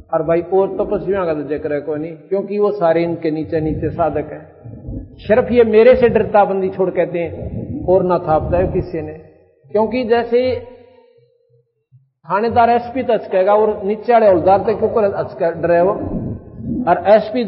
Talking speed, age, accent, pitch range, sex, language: 125 wpm, 50-69, native, 160-220 Hz, male, Hindi